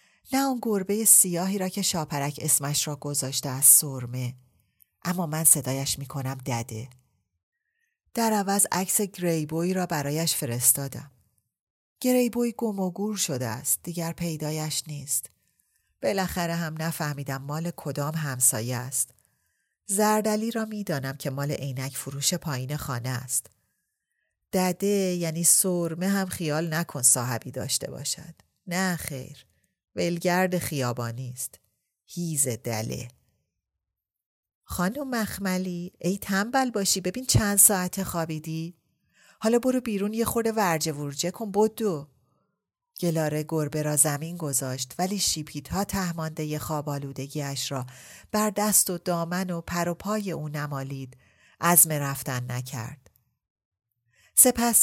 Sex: female